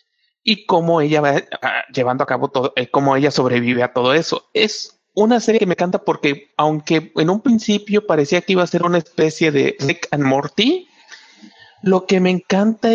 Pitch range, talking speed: 145-205 Hz, 195 wpm